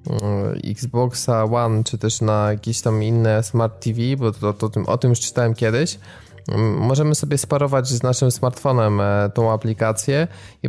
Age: 20-39